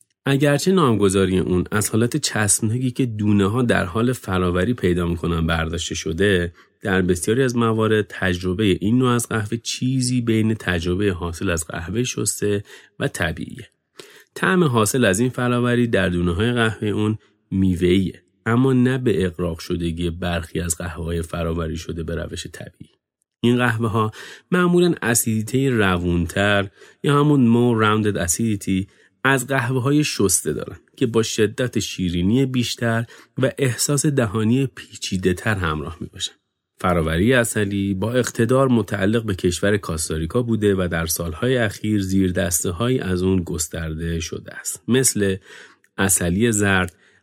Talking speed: 140 wpm